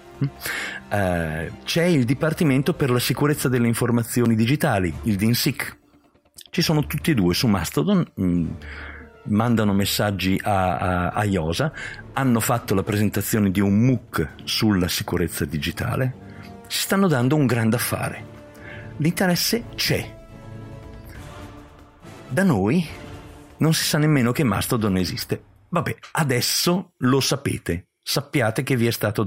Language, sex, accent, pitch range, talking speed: Italian, male, native, 95-140 Hz, 125 wpm